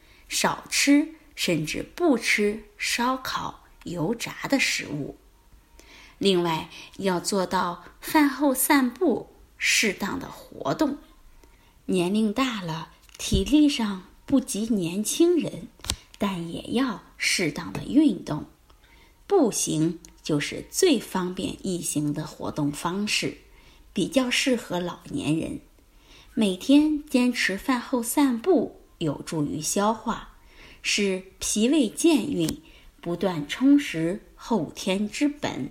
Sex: female